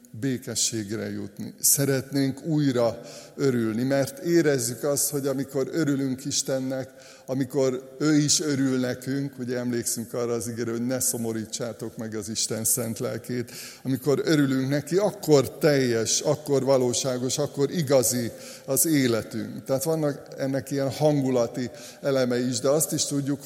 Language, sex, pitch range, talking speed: Hungarian, male, 115-135 Hz, 135 wpm